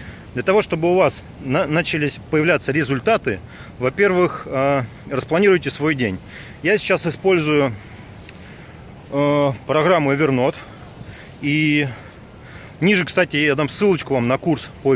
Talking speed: 110 wpm